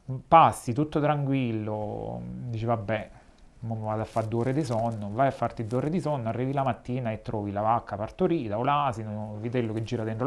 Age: 30-49